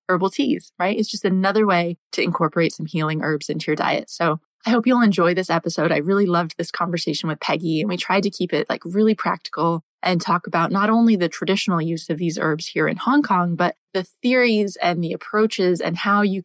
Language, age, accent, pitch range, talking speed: English, 20-39, American, 170-215 Hz, 225 wpm